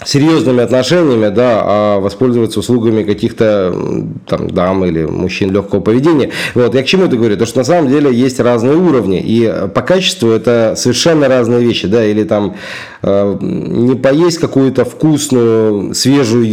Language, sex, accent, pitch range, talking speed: Russian, male, native, 105-140 Hz, 155 wpm